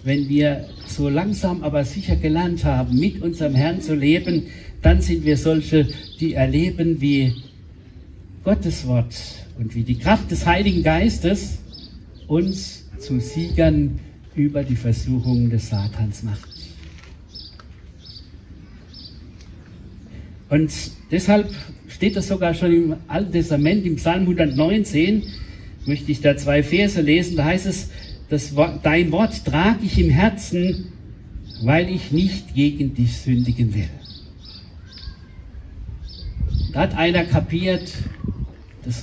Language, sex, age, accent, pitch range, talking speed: German, male, 60-79, German, 95-155 Hz, 120 wpm